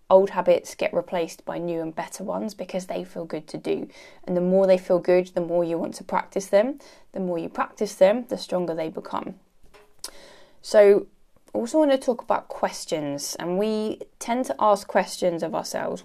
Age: 20-39